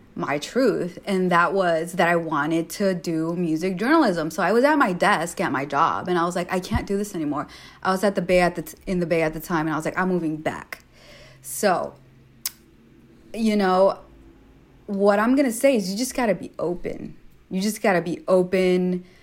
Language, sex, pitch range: English, female, 165-195 Hz